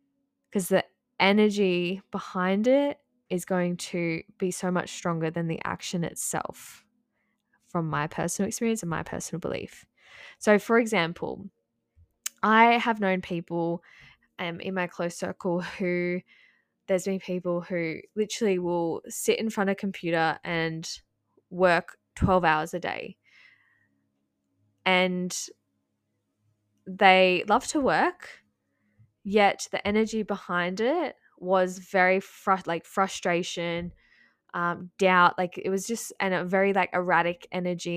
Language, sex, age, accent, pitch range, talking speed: English, female, 10-29, Australian, 170-205 Hz, 130 wpm